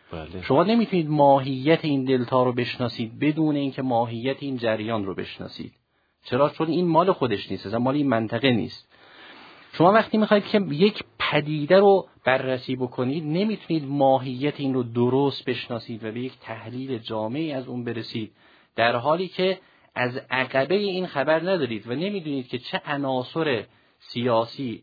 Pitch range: 120-155 Hz